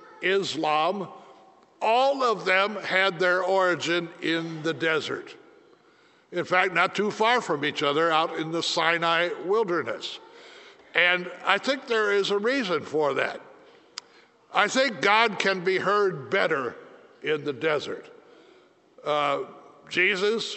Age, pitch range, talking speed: 60-79, 175-230 Hz, 130 wpm